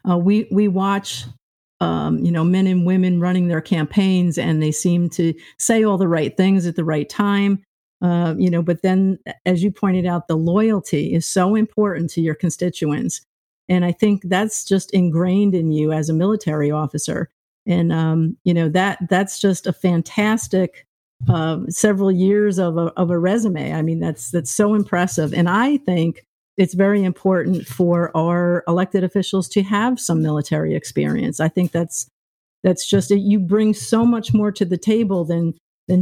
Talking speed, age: 180 wpm, 50-69